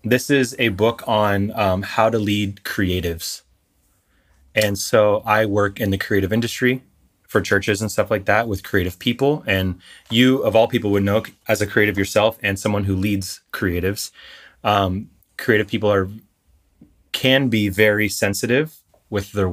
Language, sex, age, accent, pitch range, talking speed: English, male, 20-39, American, 95-115 Hz, 165 wpm